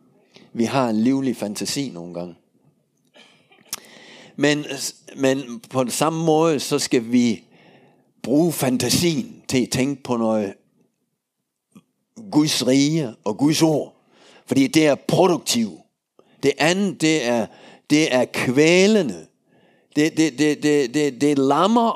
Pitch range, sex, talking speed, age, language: 135-180 Hz, male, 120 wpm, 60-79, Danish